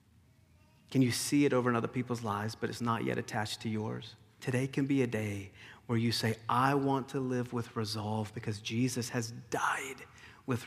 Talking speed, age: 195 wpm, 40-59